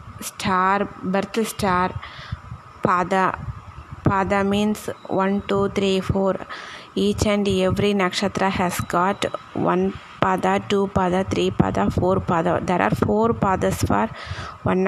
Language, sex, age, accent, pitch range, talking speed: Tamil, female, 20-39, native, 185-215 Hz, 130 wpm